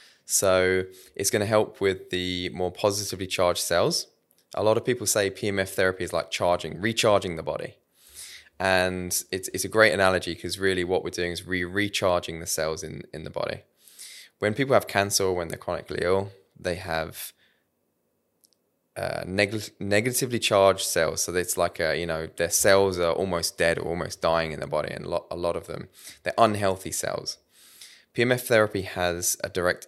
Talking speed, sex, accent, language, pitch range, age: 185 wpm, male, British, English, 85-105 Hz, 20-39